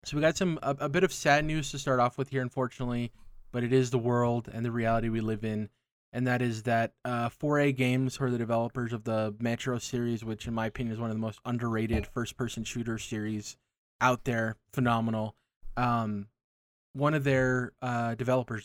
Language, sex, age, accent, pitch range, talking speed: English, male, 20-39, American, 110-125 Hz, 210 wpm